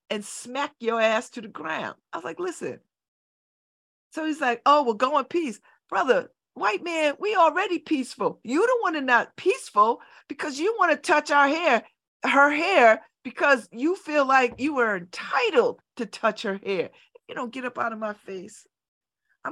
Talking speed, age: 190 wpm, 50-69